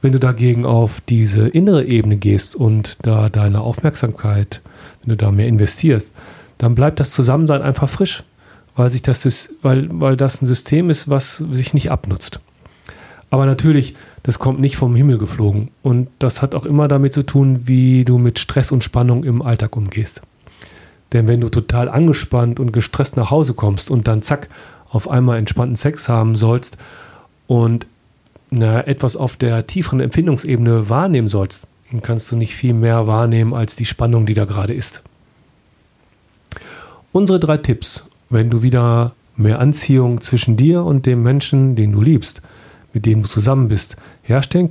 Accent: German